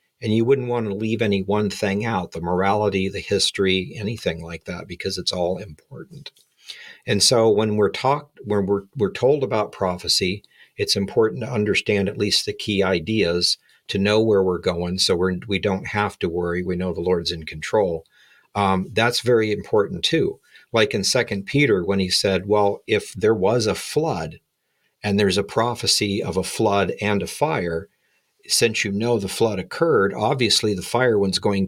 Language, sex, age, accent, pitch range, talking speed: English, male, 50-69, American, 95-110 Hz, 180 wpm